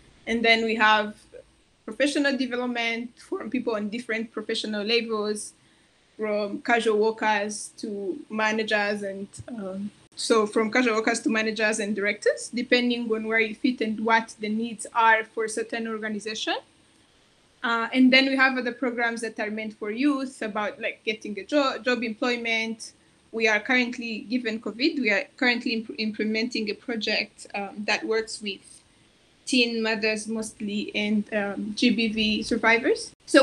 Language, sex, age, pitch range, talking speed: English, female, 20-39, 215-245 Hz, 150 wpm